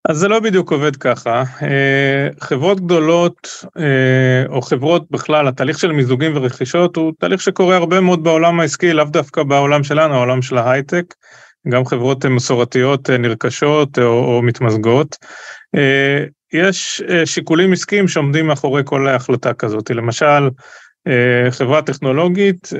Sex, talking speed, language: male, 125 wpm, Hebrew